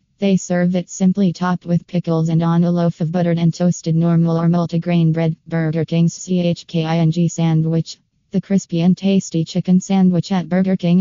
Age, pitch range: 20-39, 165-180 Hz